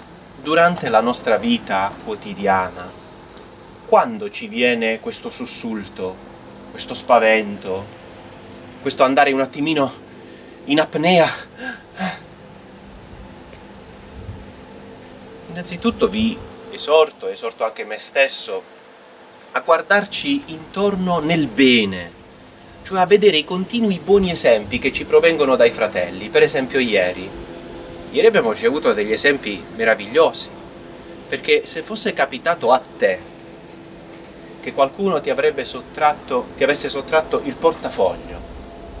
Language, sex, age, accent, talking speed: Italian, male, 30-49, native, 105 wpm